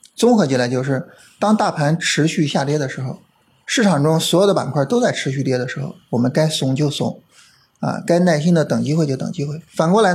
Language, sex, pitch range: Chinese, male, 135-175 Hz